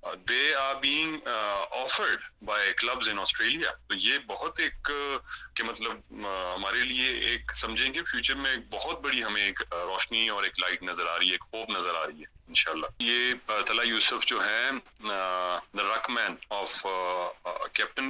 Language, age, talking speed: Urdu, 30-49, 150 wpm